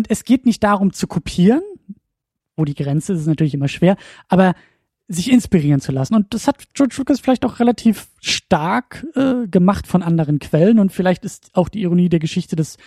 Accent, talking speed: German, 205 wpm